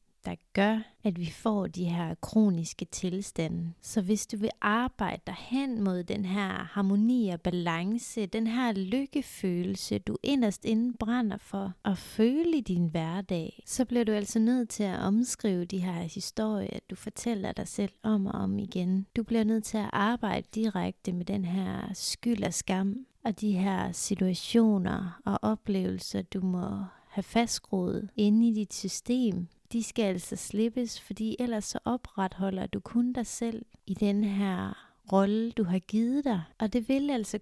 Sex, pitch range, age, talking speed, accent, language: female, 190-230 Hz, 30-49, 165 wpm, native, Danish